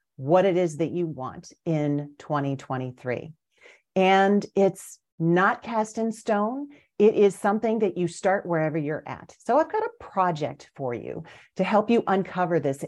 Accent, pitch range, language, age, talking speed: American, 150-205 Hz, English, 40-59, 165 wpm